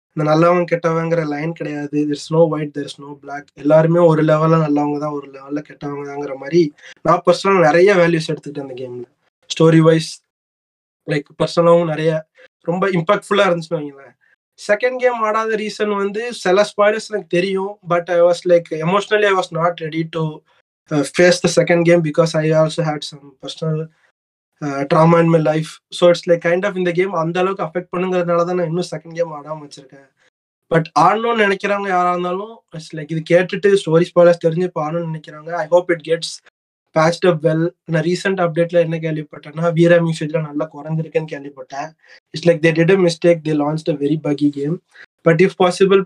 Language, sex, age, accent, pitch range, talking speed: Tamil, male, 20-39, native, 155-175 Hz, 165 wpm